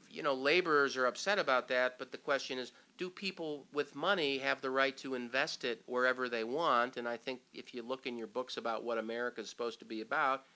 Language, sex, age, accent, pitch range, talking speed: English, male, 50-69, American, 125-170 Hz, 235 wpm